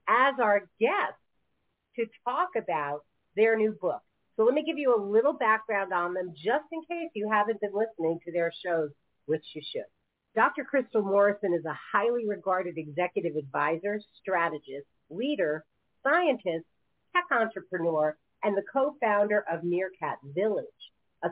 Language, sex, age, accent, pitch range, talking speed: English, female, 40-59, American, 175-230 Hz, 150 wpm